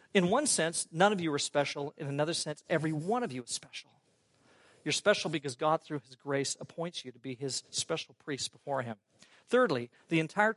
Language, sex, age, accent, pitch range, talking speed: English, male, 40-59, American, 160-235 Hz, 205 wpm